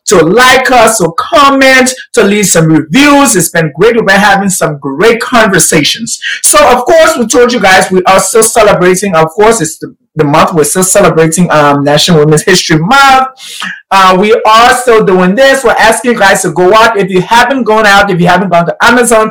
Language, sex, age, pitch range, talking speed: English, male, 30-49, 170-230 Hz, 210 wpm